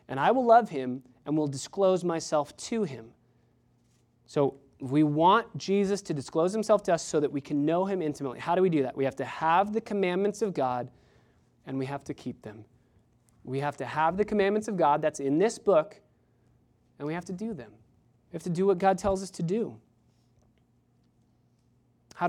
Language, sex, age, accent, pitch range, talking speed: English, male, 20-39, American, 135-185 Hz, 200 wpm